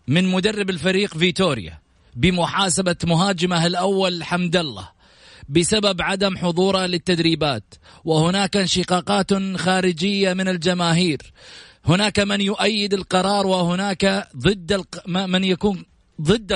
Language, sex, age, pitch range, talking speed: English, male, 30-49, 150-200 Hz, 95 wpm